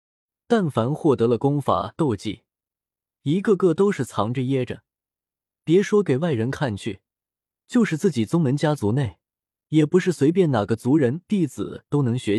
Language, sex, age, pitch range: Chinese, male, 20-39, 115-160 Hz